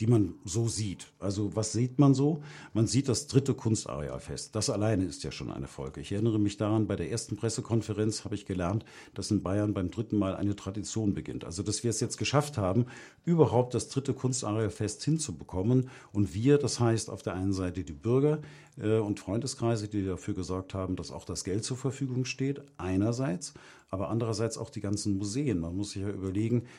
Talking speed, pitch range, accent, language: 195 wpm, 95-120 Hz, German, German